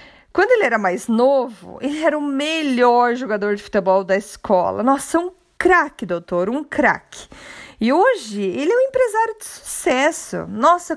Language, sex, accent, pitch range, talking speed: Portuguese, female, Brazilian, 220-300 Hz, 160 wpm